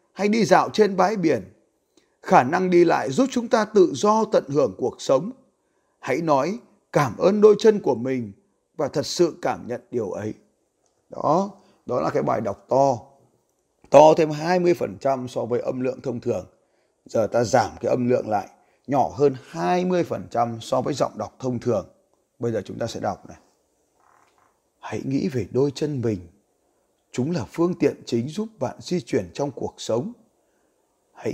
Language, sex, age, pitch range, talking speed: Vietnamese, male, 30-49, 120-175 Hz, 175 wpm